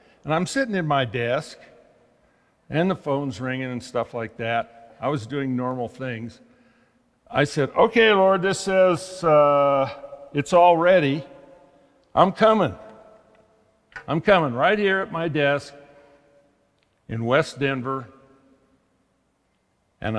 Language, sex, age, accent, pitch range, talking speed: English, male, 60-79, American, 125-155 Hz, 125 wpm